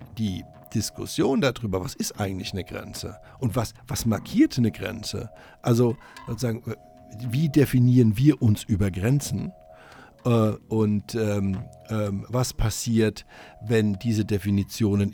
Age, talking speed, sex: 60-79, 110 wpm, male